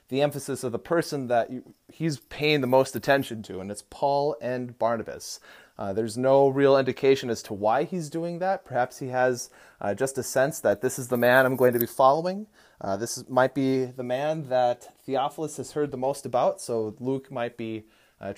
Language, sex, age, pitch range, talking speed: English, male, 30-49, 120-150 Hz, 205 wpm